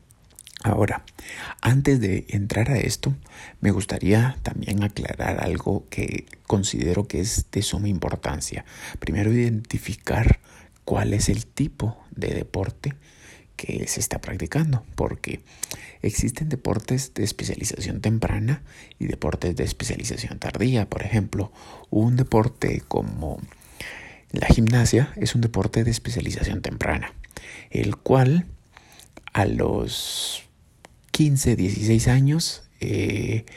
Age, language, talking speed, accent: 50-69, Spanish, 110 wpm, Mexican